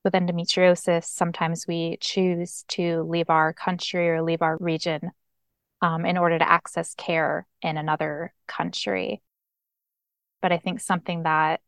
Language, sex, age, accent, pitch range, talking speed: English, female, 20-39, American, 165-185 Hz, 140 wpm